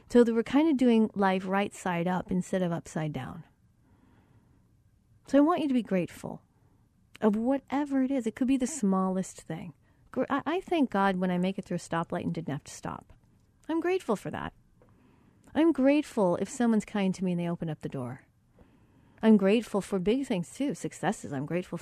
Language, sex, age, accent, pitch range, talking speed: English, female, 40-59, American, 175-255 Hz, 195 wpm